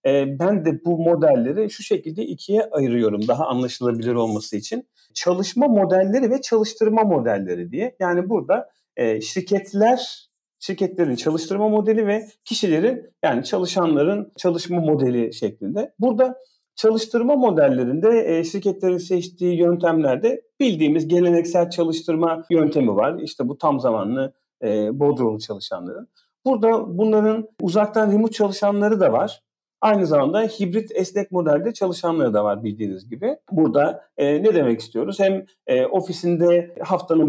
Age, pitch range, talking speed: 40-59, 145-220 Hz, 125 wpm